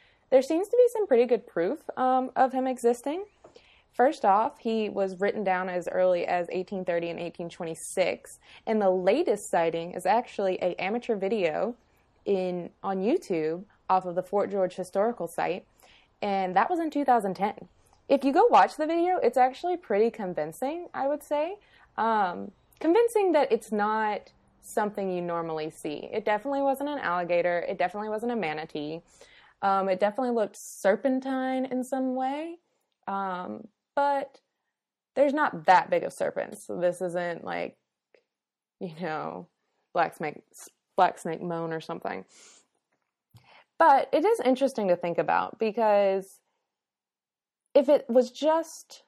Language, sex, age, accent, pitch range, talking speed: English, female, 20-39, American, 185-265 Hz, 150 wpm